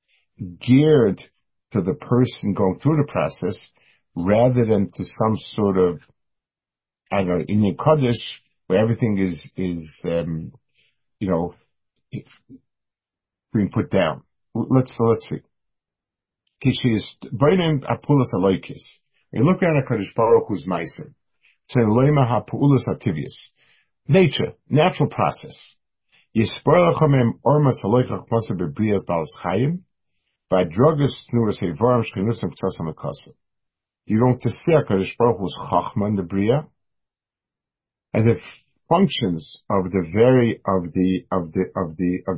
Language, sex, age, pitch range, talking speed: English, male, 50-69, 95-130 Hz, 105 wpm